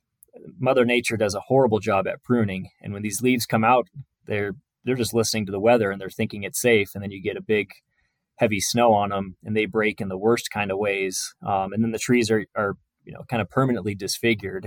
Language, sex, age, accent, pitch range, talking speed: English, male, 20-39, American, 100-115 Hz, 235 wpm